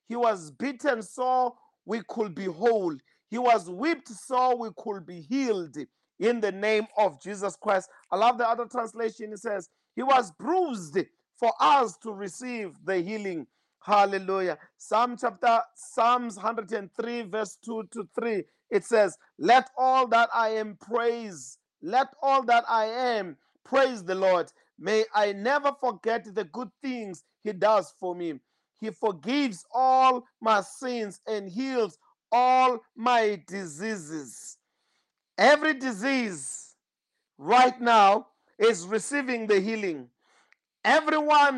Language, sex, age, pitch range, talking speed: English, male, 40-59, 200-255 Hz, 135 wpm